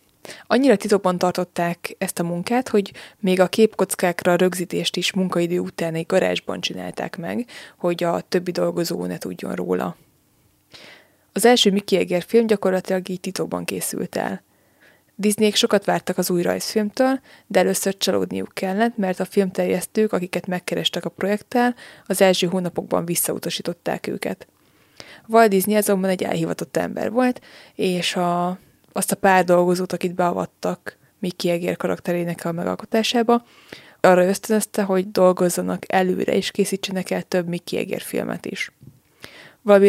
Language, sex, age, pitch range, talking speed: Hungarian, female, 20-39, 175-205 Hz, 135 wpm